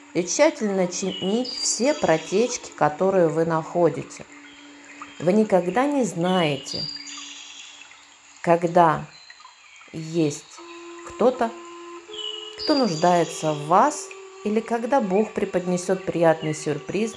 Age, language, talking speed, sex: 50-69, Russian, 85 wpm, female